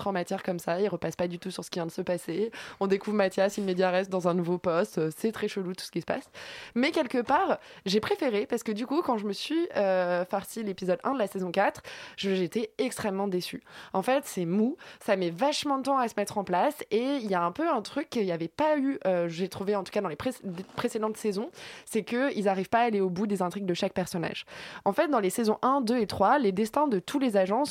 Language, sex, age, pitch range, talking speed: French, female, 20-39, 185-240 Hz, 265 wpm